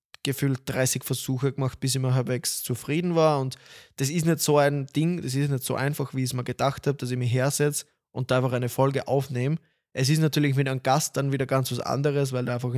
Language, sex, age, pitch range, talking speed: German, male, 20-39, 130-150 Hz, 245 wpm